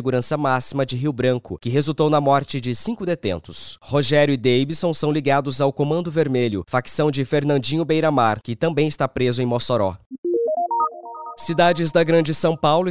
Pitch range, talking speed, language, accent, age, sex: 130-160 Hz, 165 wpm, English, Brazilian, 20-39, male